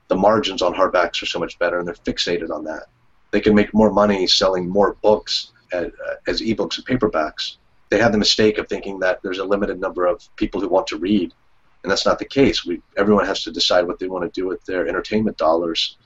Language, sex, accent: English, male, American